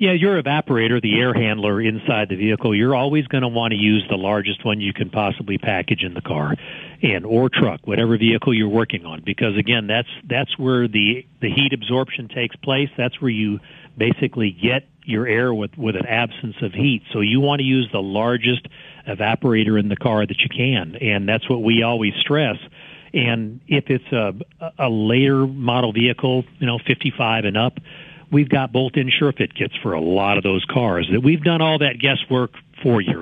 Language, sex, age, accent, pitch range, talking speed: English, male, 40-59, American, 110-140 Hz, 200 wpm